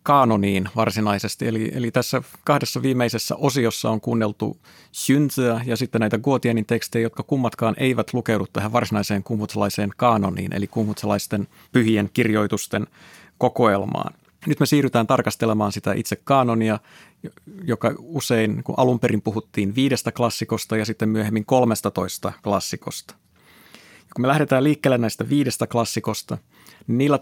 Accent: native